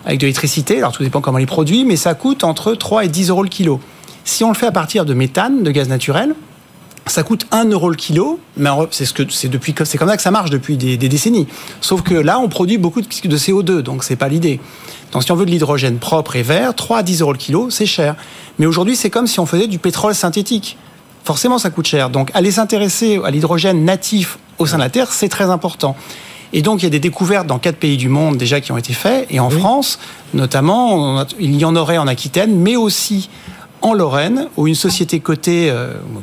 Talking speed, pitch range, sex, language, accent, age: 245 wpm, 145-200 Hz, male, French, French, 40-59